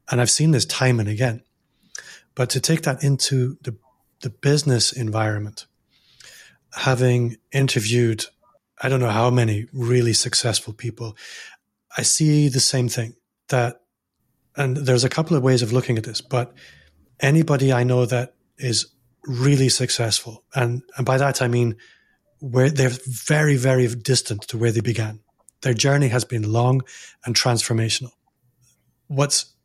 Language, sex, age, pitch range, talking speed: English, male, 30-49, 115-130 Hz, 150 wpm